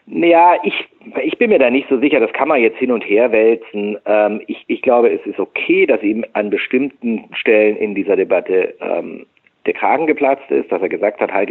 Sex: male